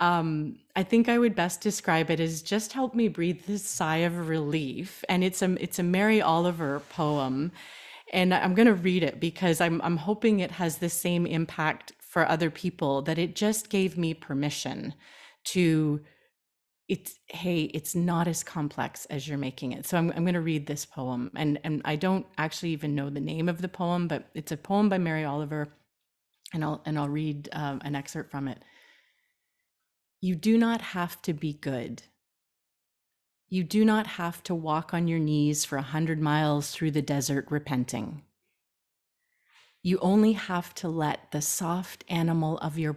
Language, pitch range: English, 150-185 Hz